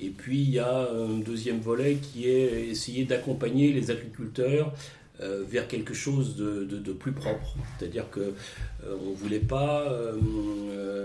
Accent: French